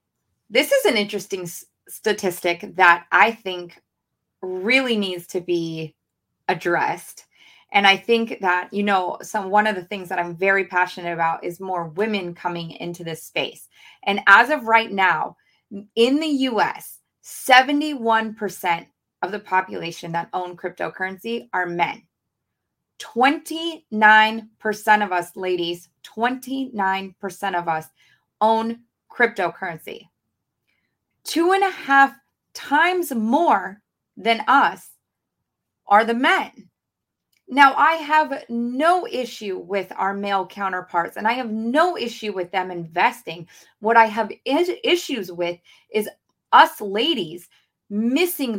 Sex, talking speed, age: female, 120 wpm, 20-39